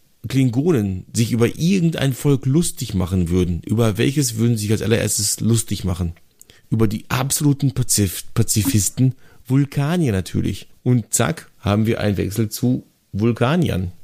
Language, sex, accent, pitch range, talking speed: German, male, German, 95-125 Hz, 135 wpm